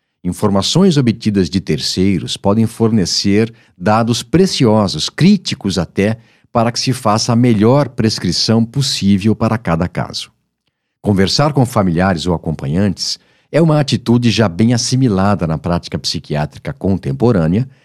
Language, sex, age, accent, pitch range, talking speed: Portuguese, male, 50-69, Brazilian, 95-130 Hz, 120 wpm